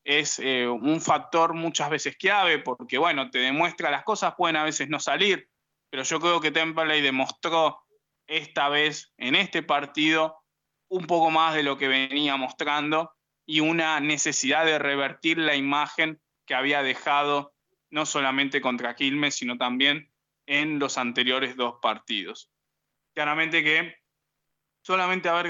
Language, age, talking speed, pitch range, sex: Spanish, 20-39, 145 wpm, 140-165 Hz, male